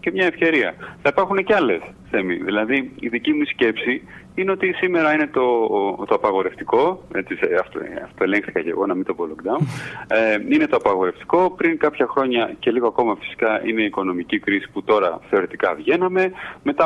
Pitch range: 110-165 Hz